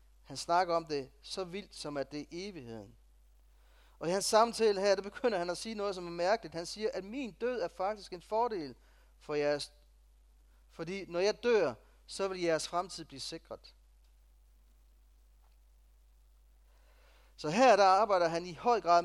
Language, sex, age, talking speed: Danish, male, 30-49, 175 wpm